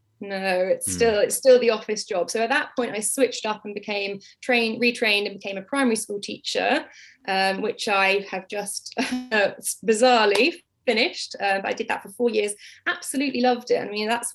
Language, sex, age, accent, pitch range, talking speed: English, female, 10-29, British, 205-255 Hz, 190 wpm